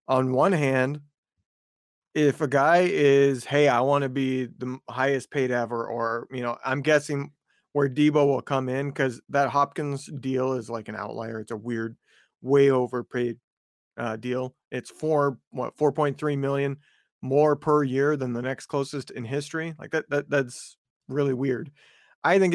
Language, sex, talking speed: English, male, 175 wpm